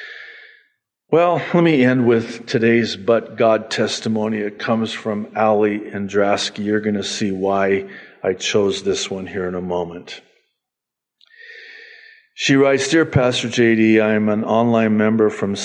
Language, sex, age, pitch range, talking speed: English, male, 50-69, 110-155 Hz, 145 wpm